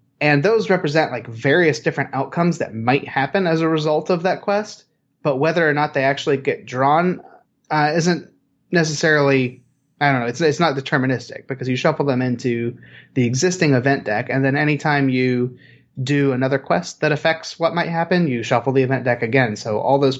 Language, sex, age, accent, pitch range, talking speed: English, male, 30-49, American, 120-145 Hz, 190 wpm